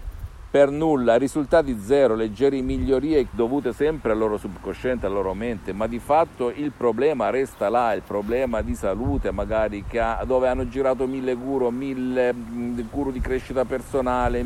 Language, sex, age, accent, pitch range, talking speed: Italian, male, 50-69, native, 100-130 Hz, 160 wpm